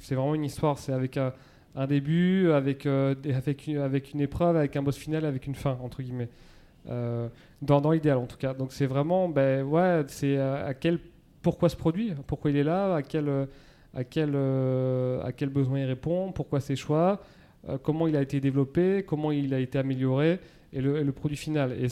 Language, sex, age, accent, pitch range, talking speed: French, male, 30-49, French, 135-155 Hz, 215 wpm